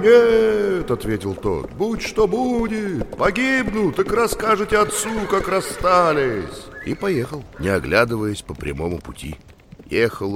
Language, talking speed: Russian, 115 wpm